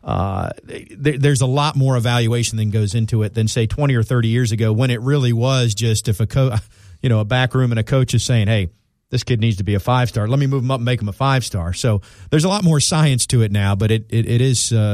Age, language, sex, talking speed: 40-59, English, male, 275 wpm